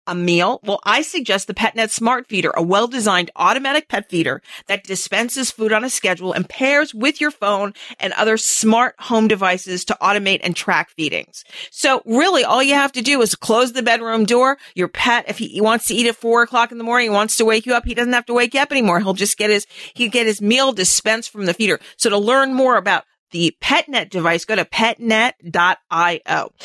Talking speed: 215 wpm